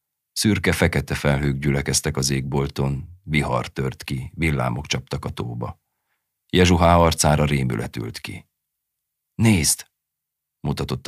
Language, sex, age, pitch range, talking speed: Hungarian, male, 40-59, 70-85 Hz, 110 wpm